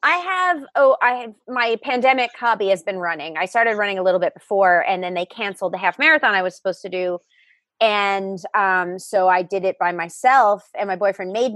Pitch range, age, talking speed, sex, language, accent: 195-265 Hz, 30-49, 220 wpm, female, English, American